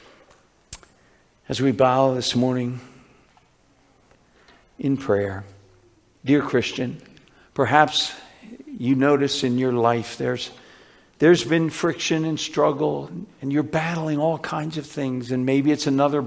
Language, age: English, 60-79